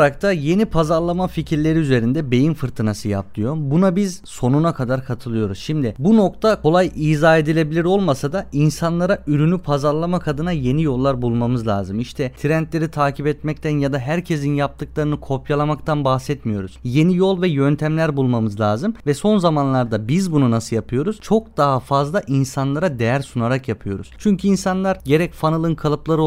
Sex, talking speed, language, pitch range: male, 150 wpm, Turkish, 130-165 Hz